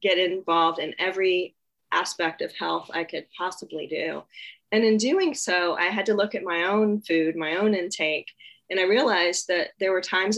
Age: 30-49